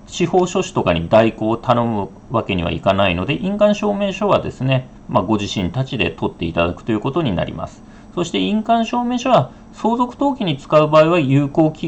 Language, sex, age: Japanese, male, 40-59